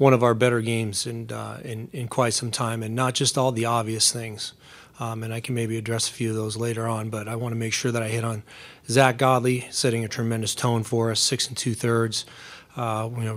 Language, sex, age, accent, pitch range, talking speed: English, male, 30-49, American, 110-125 Hz, 250 wpm